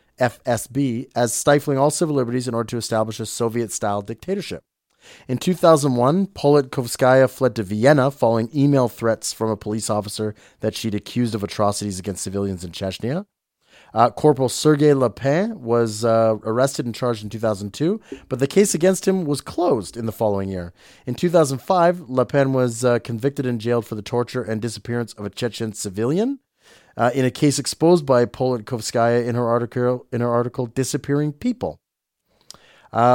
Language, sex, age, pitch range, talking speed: English, male, 30-49, 110-140 Hz, 165 wpm